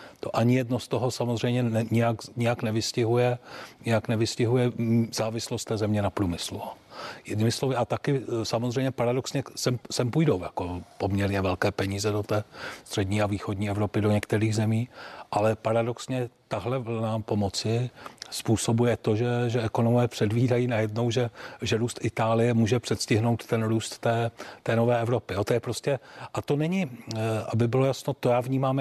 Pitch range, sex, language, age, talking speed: 110-125 Hz, male, Czech, 40-59, 150 wpm